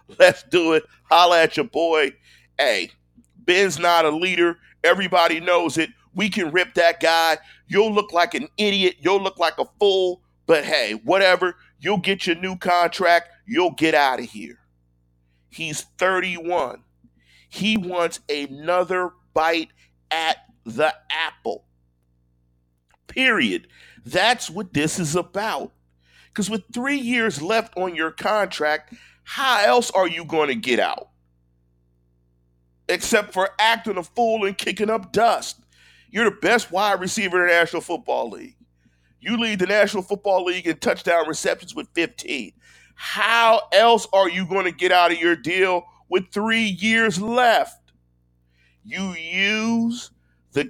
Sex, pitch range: male, 130-195 Hz